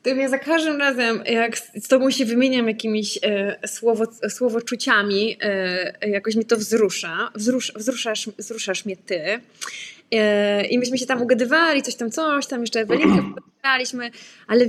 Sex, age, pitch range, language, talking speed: female, 20-39, 220-280 Hz, English, 155 wpm